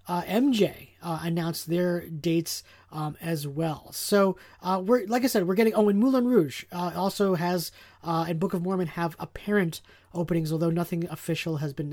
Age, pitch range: 30-49, 155-180 Hz